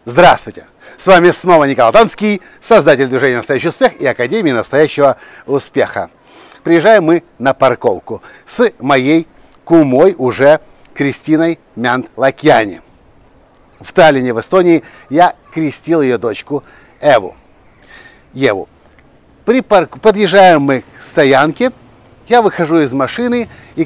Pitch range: 145-185 Hz